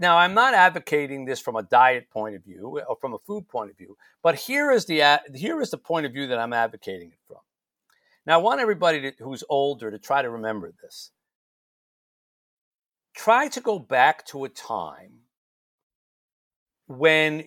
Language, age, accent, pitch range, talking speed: English, 50-69, American, 120-180 Hz, 170 wpm